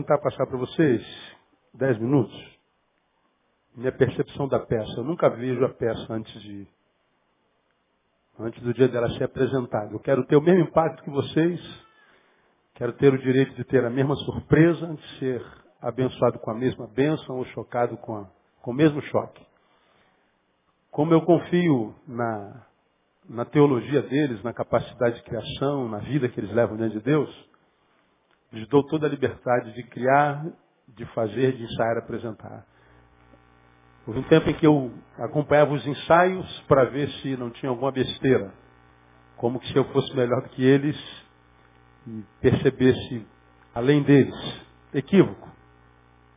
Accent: Brazilian